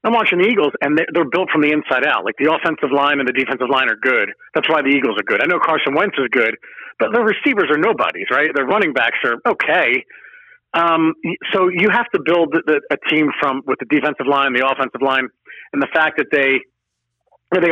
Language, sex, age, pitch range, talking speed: English, male, 40-59, 130-155 Hz, 225 wpm